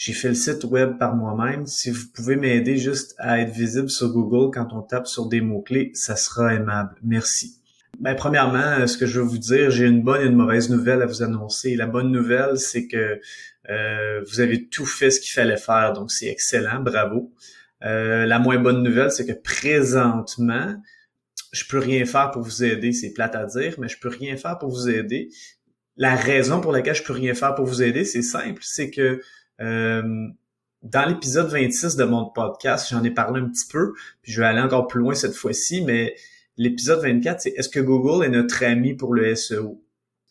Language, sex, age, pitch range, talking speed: French, male, 30-49, 115-135 Hz, 210 wpm